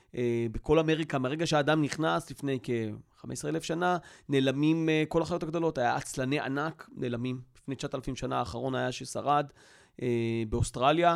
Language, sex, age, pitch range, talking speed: Hebrew, male, 30-49, 125-160 Hz, 150 wpm